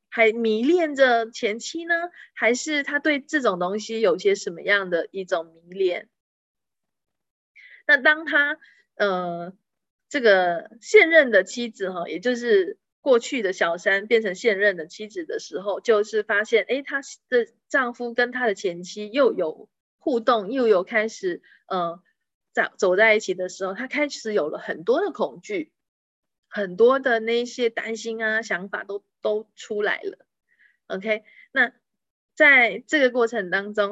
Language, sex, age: Chinese, female, 20-39